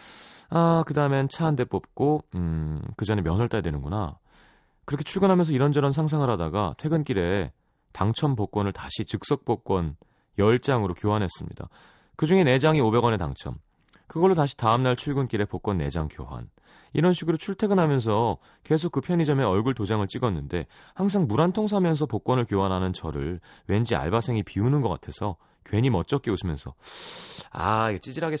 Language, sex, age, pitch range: Korean, male, 30-49, 100-155 Hz